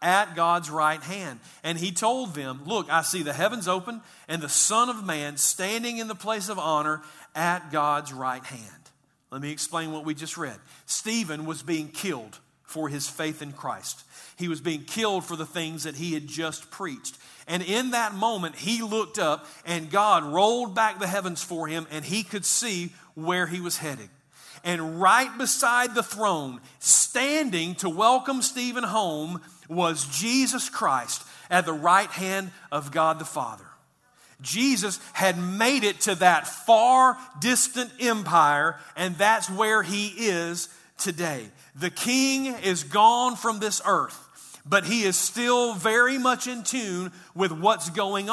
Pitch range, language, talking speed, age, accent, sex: 160-225 Hz, English, 165 wpm, 40-59, American, male